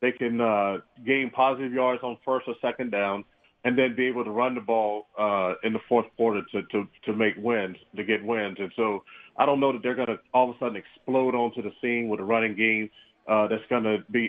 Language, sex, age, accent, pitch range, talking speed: English, male, 40-59, American, 115-130 Hz, 240 wpm